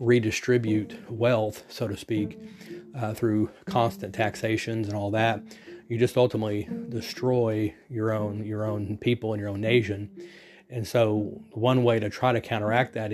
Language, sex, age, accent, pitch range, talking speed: English, male, 30-49, American, 110-130 Hz, 155 wpm